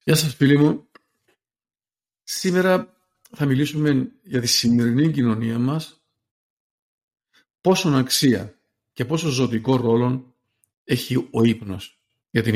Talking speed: 110 wpm